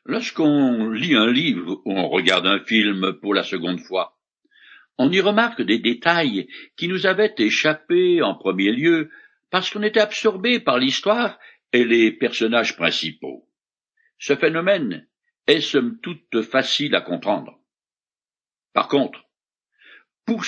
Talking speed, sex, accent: 135 wpm, male, French